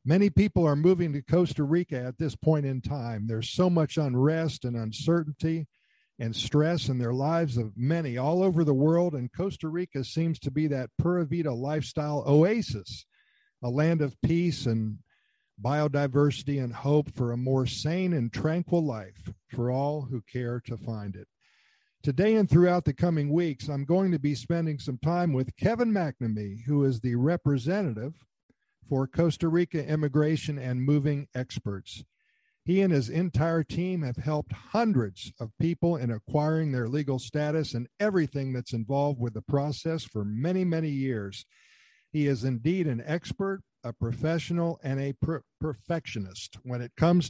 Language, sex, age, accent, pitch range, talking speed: English, male, 50-69, American, 125-165 Hz, 160 wpm